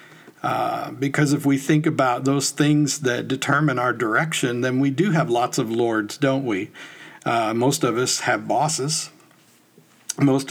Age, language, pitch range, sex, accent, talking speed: 60-79, English, 130-155 Hz, male, American, 160 wpm